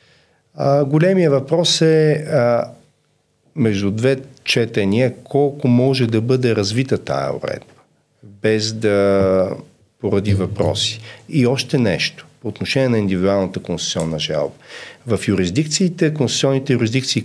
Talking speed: 110 wpm